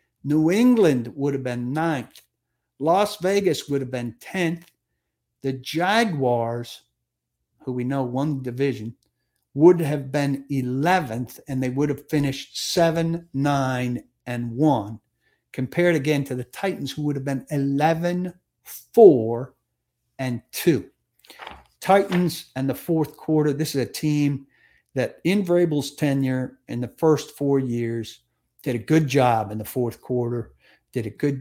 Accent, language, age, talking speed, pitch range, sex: American, English, 60-79, 145 wpm, 125-155 Hz, male